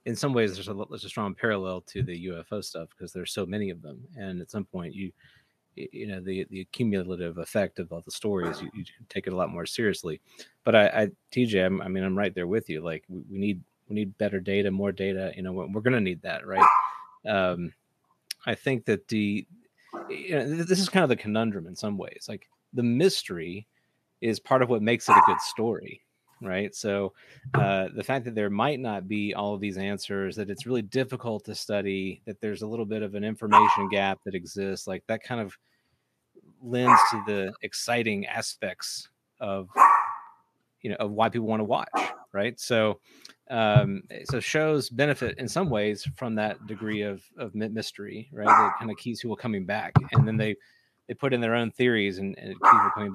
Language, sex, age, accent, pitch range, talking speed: English, male, 30-49, American, 95-120 Hz, 210 wpm